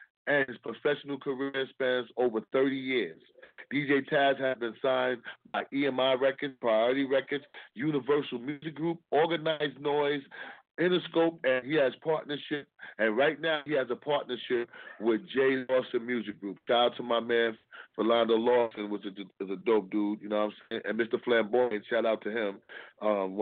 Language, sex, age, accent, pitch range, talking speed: English, male, 30-49, American, 110-130 Hz, 170 wpm